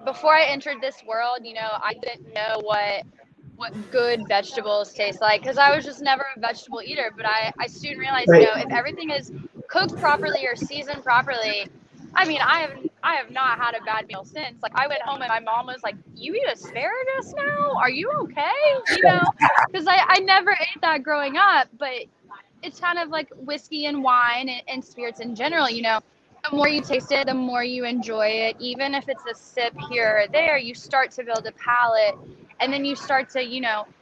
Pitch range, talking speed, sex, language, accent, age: 220-280 Hz, 215 wpm, female, English, American, 10-29